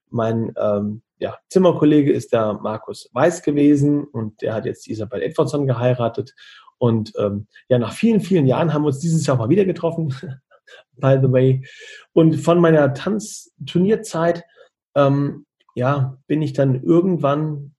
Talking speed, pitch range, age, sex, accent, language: 140 wpm, 125-165 Hz, 40-59, male, German, German